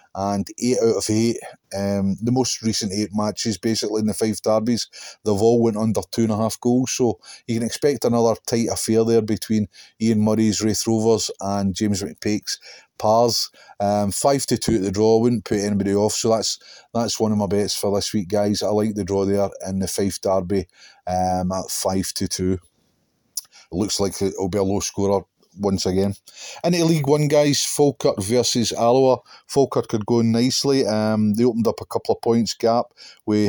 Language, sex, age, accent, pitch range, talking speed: English, male, 30-49, British, 100-115 Hz, 195 wpm